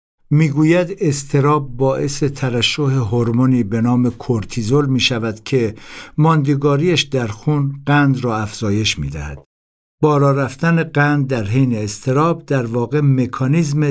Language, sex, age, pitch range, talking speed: Persian, male, 60-79, 105-145 Hz, 110 wpm